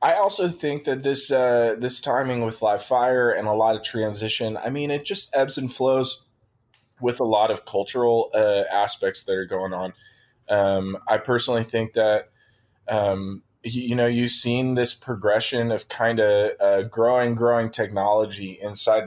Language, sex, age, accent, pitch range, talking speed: English, male, 20-39, American, 100-120 Hz, 175 wpm